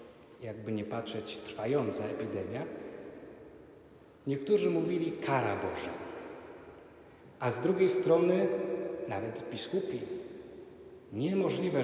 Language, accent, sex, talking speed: Polish, native, male, 80 wpm